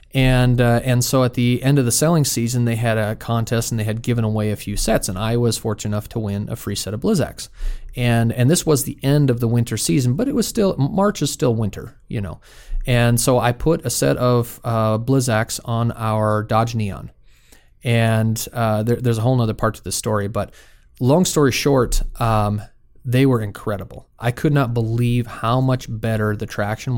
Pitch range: 110-130 Hz